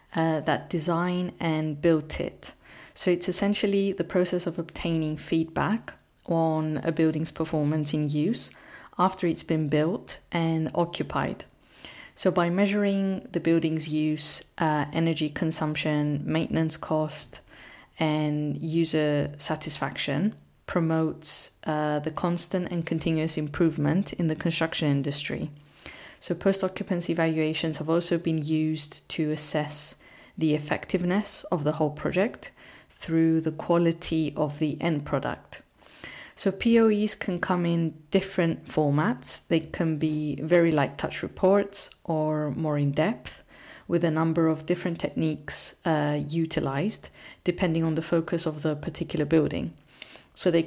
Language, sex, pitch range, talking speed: English, female, 155-175 Hz, 130 wpm